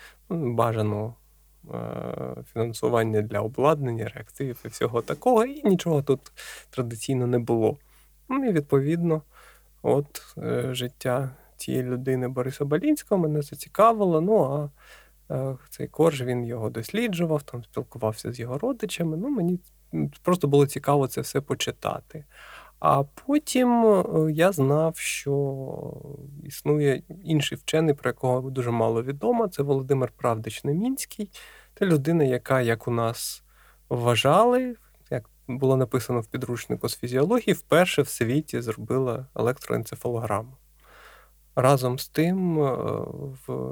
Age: 20-39